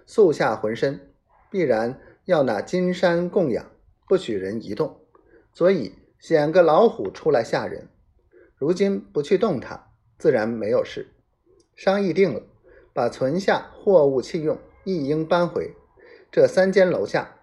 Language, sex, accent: Chinese, male, native